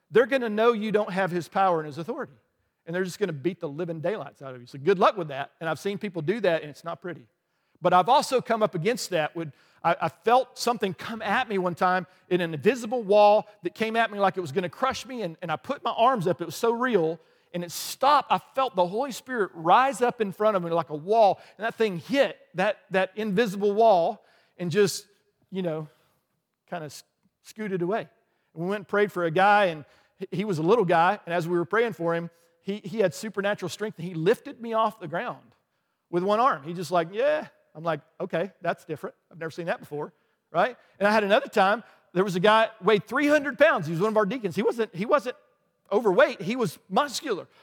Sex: male